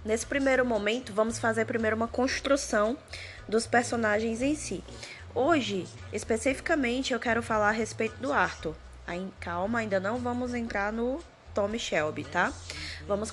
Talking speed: 145 wpm